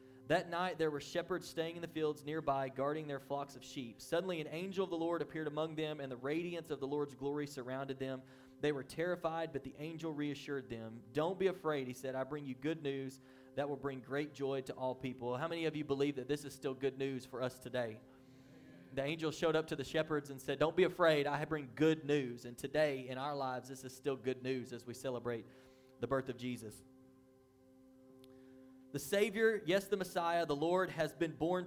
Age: 20-39